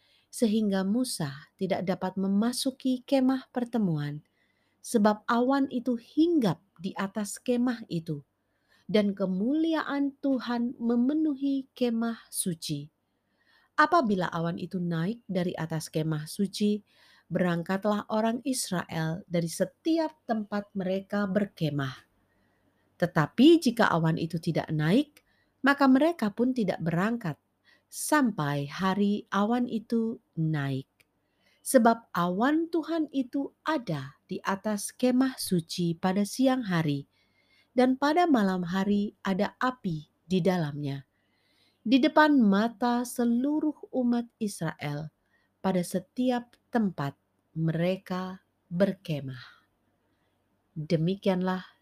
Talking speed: 100 wpm